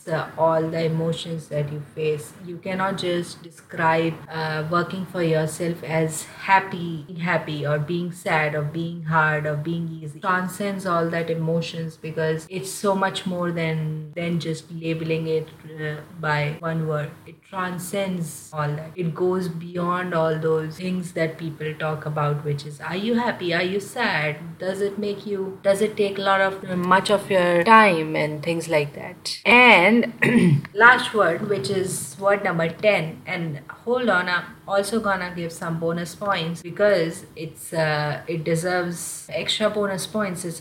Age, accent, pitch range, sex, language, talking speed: 30-49, Indian, 160-195 Hz, female, English, 170 wpm